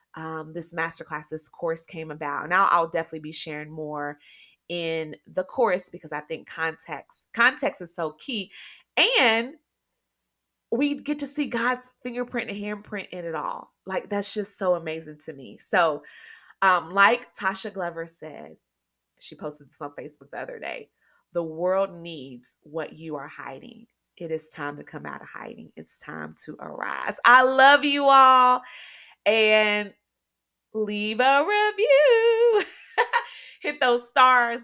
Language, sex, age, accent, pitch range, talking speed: English, female, 20-39, American, 165-240 Hz, 150 wpm